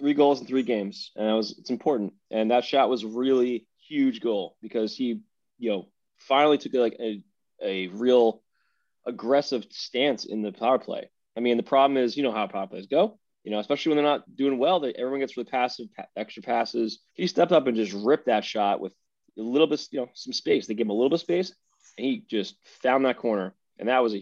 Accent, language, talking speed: American, English, 230 wpm